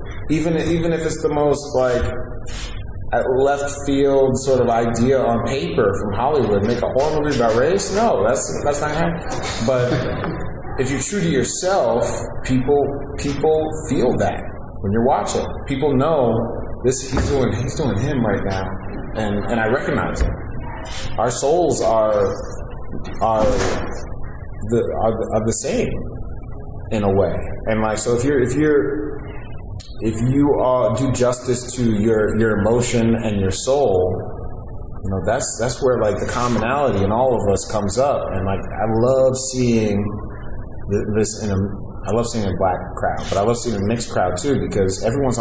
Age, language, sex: 30-49, English, male